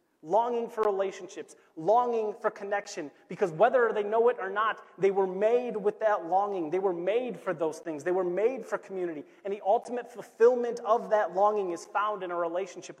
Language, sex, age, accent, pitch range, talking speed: English, male, 30-49, American, 195-235 Hz, 195 wpm